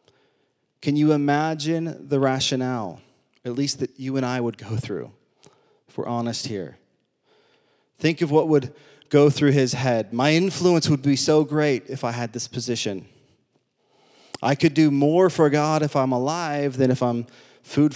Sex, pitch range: male, 130-155 Hz